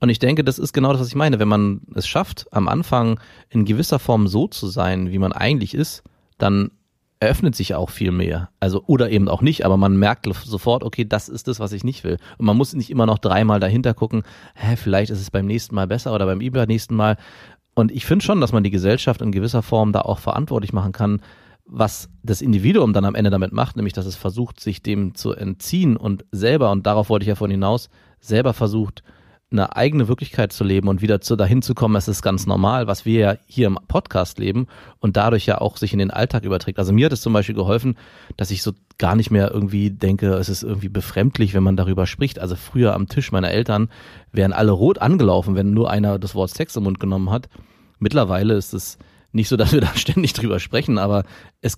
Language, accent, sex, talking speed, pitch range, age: German, German, male, 235 wpm, 100-120 Hz, 30-49